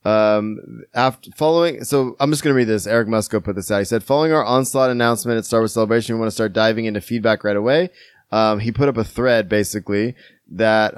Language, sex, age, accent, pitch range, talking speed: English, male, 20-39, American, 105-125 Hz, 225 wpm